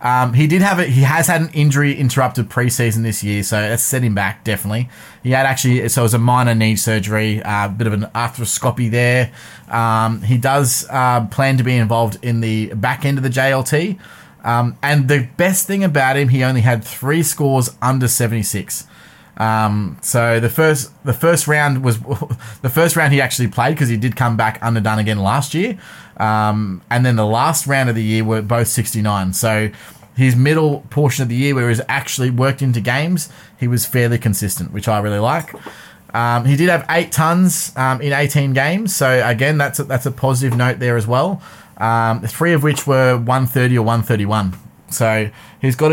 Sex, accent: male, Australian